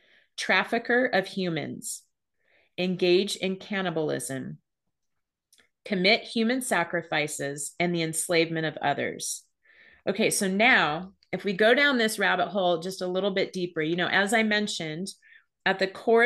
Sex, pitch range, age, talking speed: female, 170-210 Hz, 30-49, 135 wpm